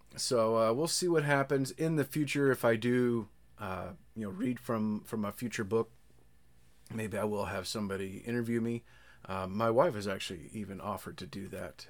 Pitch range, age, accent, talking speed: 105-140 Hz, 30-49, American, 190 wpm